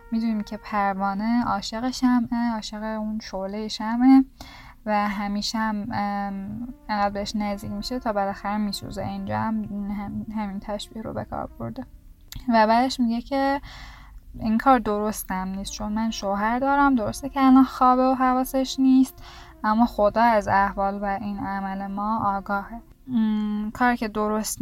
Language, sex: Persian, female